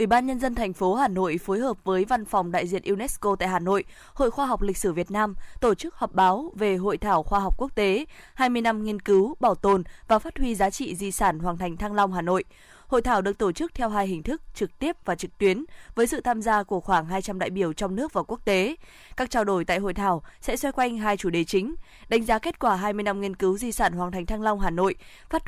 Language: Vietnamese